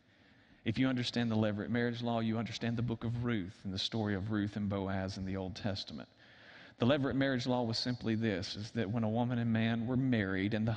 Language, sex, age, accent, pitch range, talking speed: English, male, 40-59, American, 105-120 Hz, 235 wpm